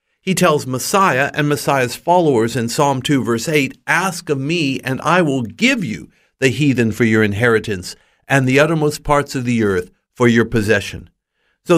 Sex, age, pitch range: male, 50-69, 115-155 Hz